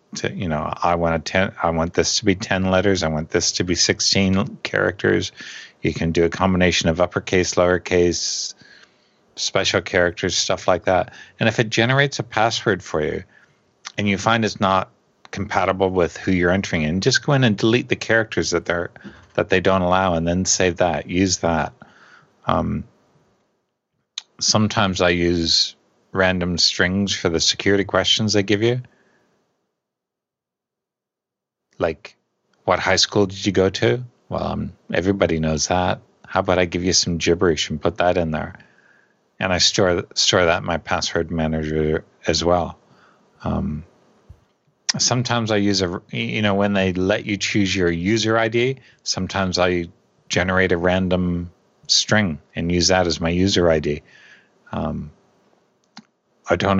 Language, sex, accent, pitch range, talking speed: English, male, American, 85-100 Hz, 160 wpm